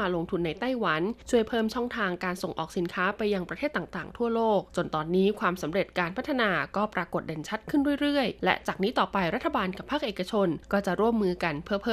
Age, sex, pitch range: 20-39, female, 180-220 Hz